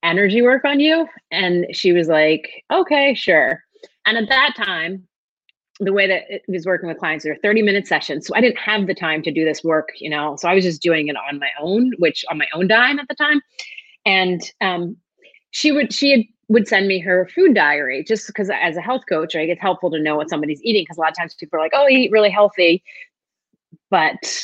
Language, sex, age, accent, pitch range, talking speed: English, female, 30-49, American, 165-250 Hz, 230 wpm